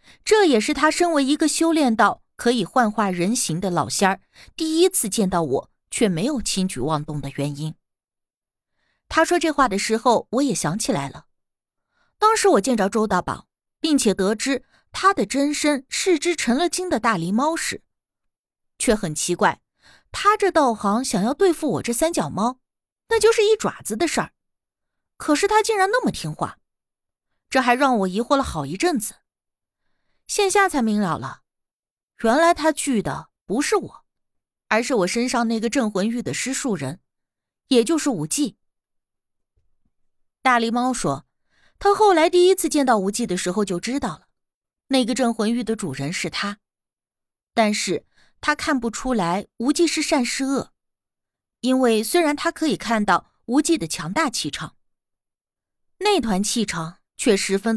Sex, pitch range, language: female, 205-310 Hz, Chinese